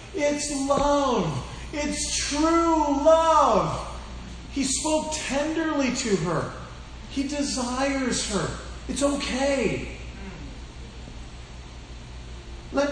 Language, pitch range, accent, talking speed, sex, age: English, 180-275 Hz, American, 75 wpm, male, 40-59